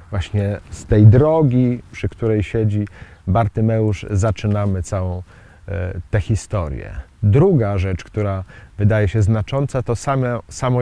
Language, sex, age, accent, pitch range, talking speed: Polish, male, 40-59, native, 90-125 Hz, 110 wpm